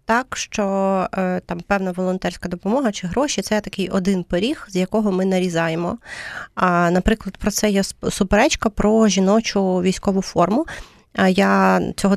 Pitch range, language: 185-225 Hz, Ukrainian